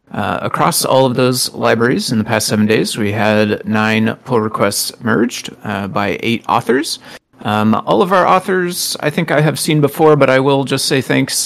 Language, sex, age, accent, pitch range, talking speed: English, male, 30-49, American, 110-130 Hz, 200 wpm